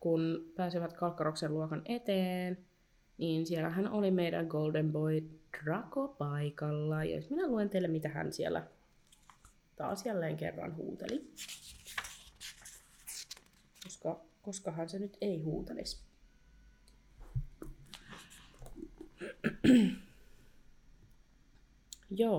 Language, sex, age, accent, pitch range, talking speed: Finnish, female, 20-39, native, 155-180 Hz, 85 wpm